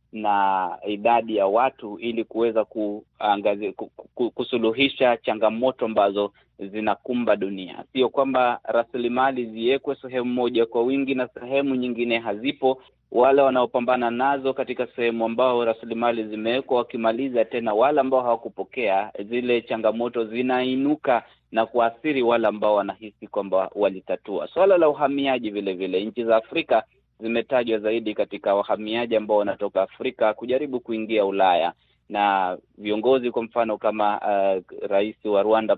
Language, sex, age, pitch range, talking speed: Swahili, male, 30-49, 105-130 Hz, 125 wpm